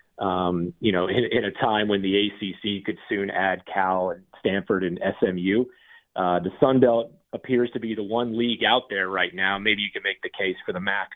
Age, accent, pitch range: 30-49, American, 90-110 Hz